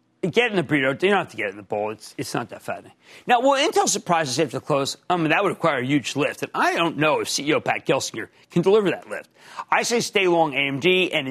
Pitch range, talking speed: 145-200 Hz, 265 wpm